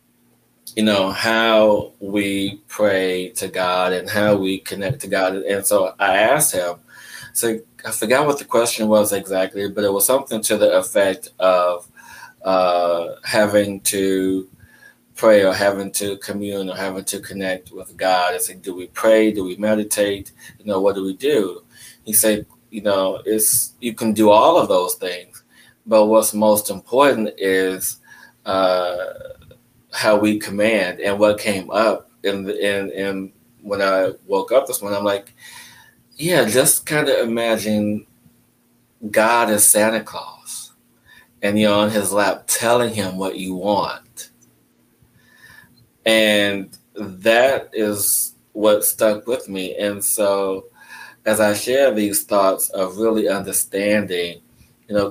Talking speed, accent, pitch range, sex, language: 150 wpm, American, 95-110 Hz, male, English